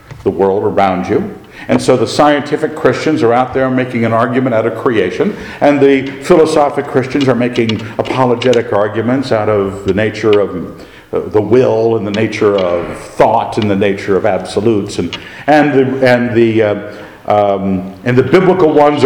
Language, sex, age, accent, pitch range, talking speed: English, male, 50-69, American, 110-165 Hz, 170 wpm